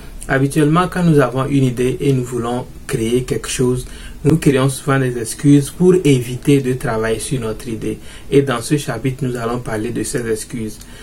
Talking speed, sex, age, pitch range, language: 185 wpm, male, 30-49, 120-140 Hz, French